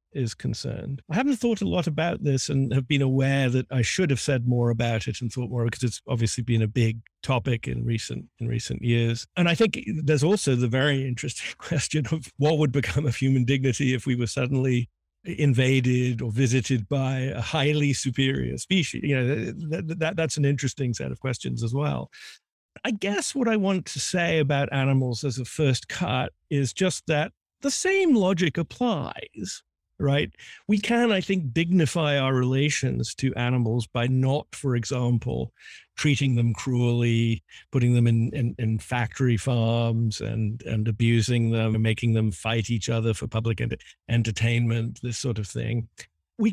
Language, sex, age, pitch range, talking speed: English, male, 50-69, 120-160 Hz, 180 wpm